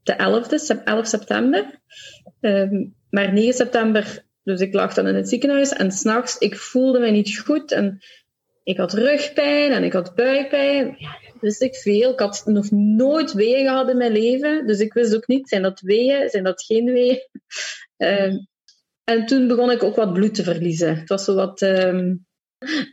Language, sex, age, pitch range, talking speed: Dutch, female, 30-49, 195-255 Hz, 185 wpm